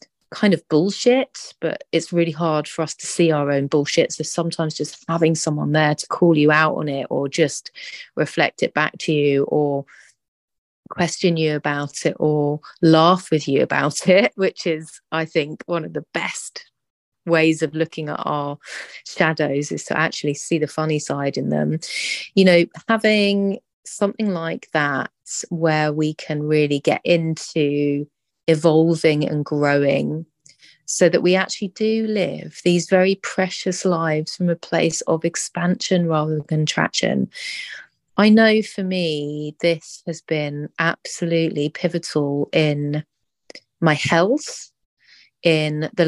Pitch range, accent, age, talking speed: 150-175 Hz, British, 30-49, 150 wpm